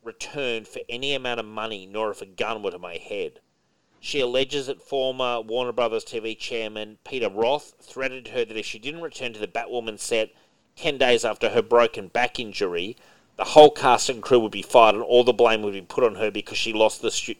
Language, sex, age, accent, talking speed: English, male, 40-59, Australian, 220 wpm